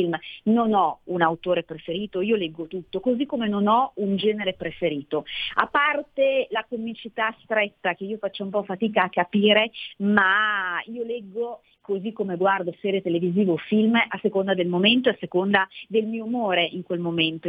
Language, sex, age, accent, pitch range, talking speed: Italian, female, 40-59, native, 170-215 Hz, 175 wpm